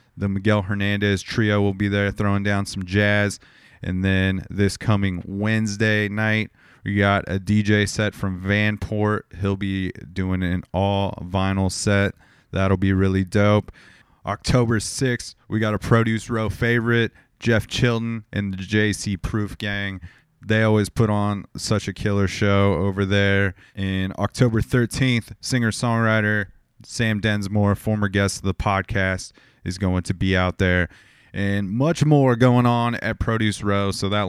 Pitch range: 95-110 Hz